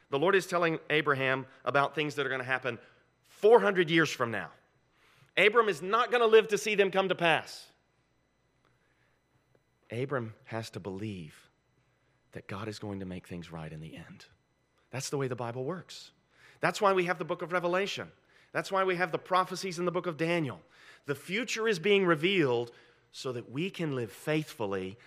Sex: male